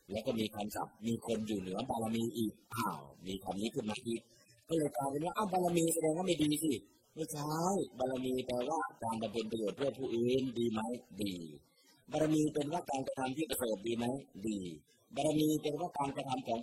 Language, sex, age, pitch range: Thai, male, 30-49, 110-140 Hz